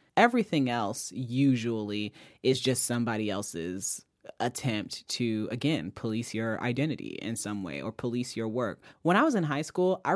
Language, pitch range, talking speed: English, 120-165 Hz, 160 wpm